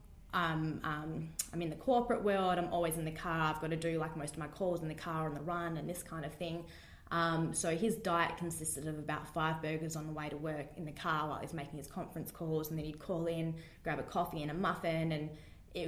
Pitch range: 155-185 Hz